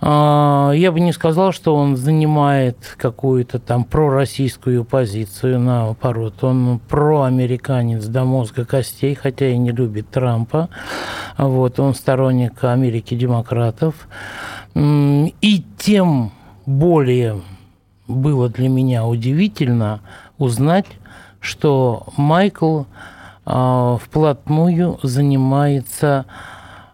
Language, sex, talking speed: Russian, male, 85 wpm